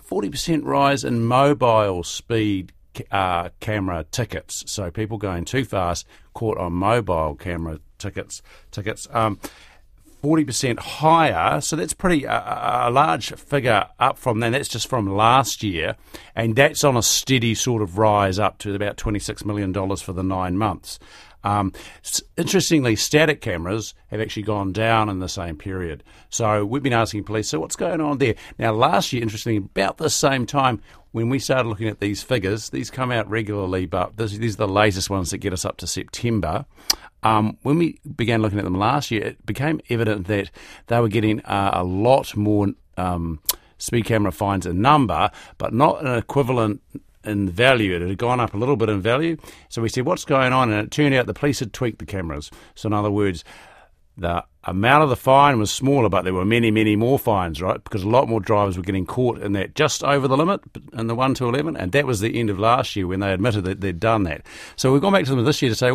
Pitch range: 100-130 Hz